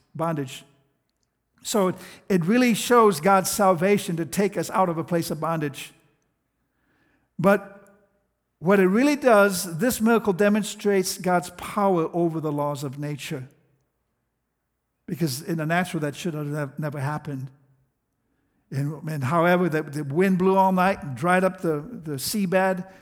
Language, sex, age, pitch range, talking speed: English, male, 60-79, 150-190 Hz, 145 wpm